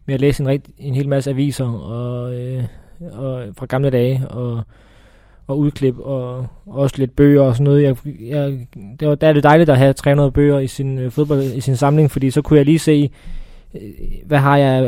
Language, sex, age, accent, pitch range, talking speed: Danish, male, 20-39, native, 125-140 Hz, 220 wpm